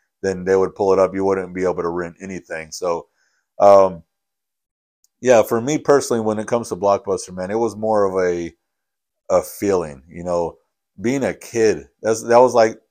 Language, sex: English, male